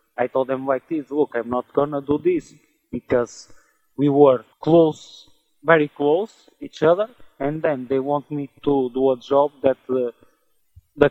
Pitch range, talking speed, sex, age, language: 120-150 Hz, 165 wpm, male, 20-39, English